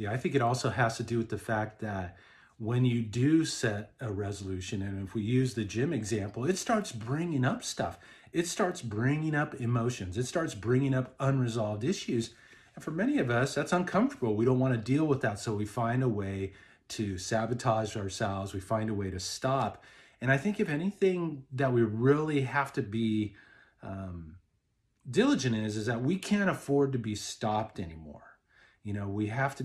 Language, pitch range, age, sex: English, 105-135 Hz, 40-59, male